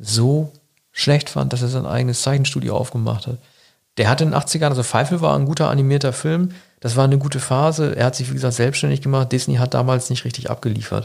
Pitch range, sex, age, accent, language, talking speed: 125-145 Hz, male, 50-69, German, German, 215 wpm